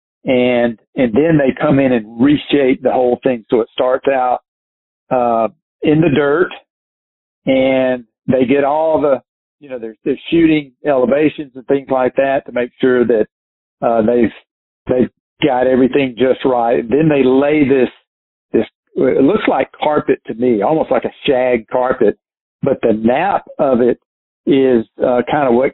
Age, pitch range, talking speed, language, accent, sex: 50-69, 120-145 Hz, 165 wpm, English, American, male